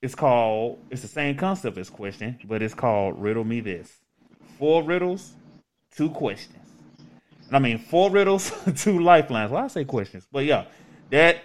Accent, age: American, 30-49